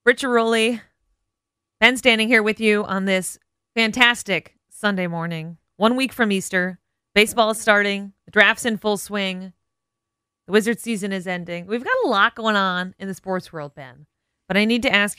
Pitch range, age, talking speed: 170-215 Hz, 30-49, 180 wpm